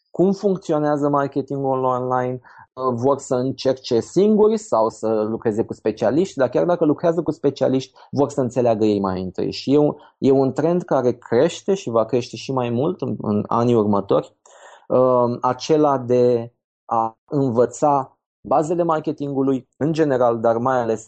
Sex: male